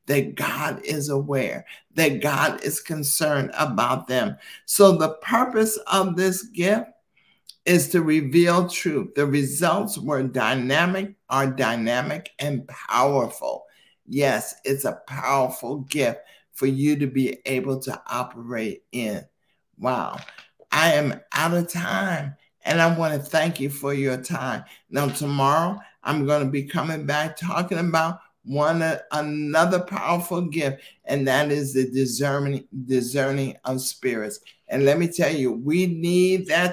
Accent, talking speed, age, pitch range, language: American, 140 wpm, 60-79, 140-175 Hz, English